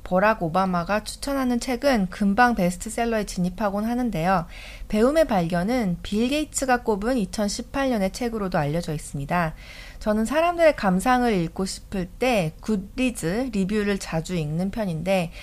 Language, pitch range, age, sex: Korean, 175-245 Hz, 40-59, female